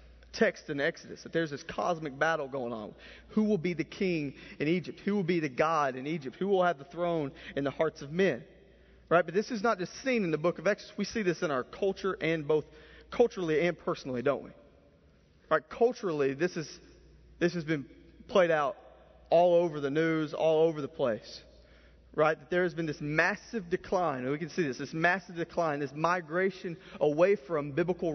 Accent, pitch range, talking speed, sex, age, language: American, 130-180 Hz, 205 wpm, male, 40-59, English